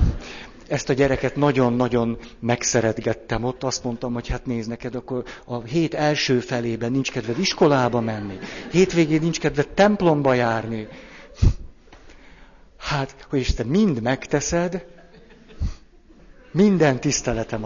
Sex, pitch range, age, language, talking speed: male, 105-135 Hz, 60-79, Hungarian, 115 wpm